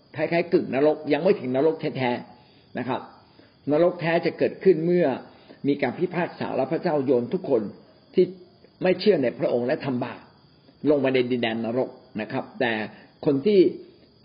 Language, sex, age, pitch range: Thai, male, 50-69, 130-180 Hz